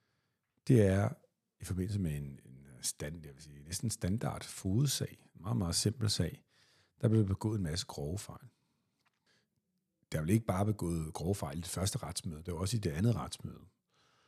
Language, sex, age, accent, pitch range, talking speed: Danish, male, 50-69, native, 95-125 Hz, 180 wpm